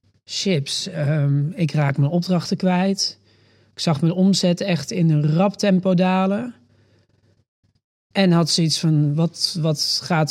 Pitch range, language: 150-185 Hz, Dutch